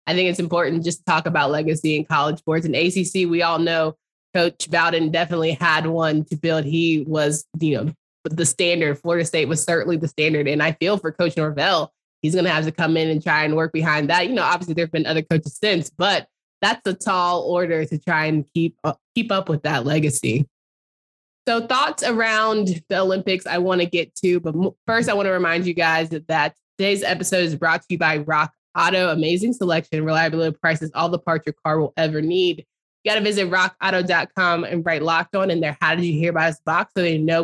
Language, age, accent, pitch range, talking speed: English, 20-39, American, 160-185 Hz, 225 wpm